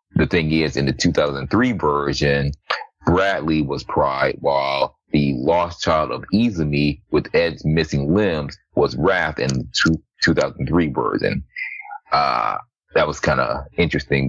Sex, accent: male, American